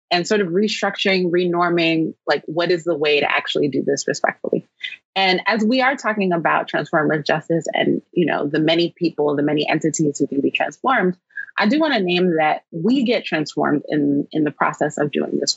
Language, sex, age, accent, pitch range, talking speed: English, female, 20-39, American, 150-190 Hz, 195 wpm